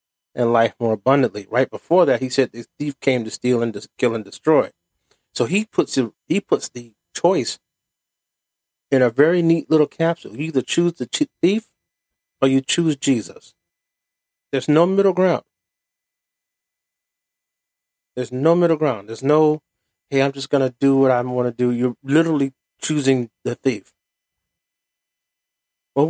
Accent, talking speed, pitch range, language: American, 150 wpm, 120-185 Hz, English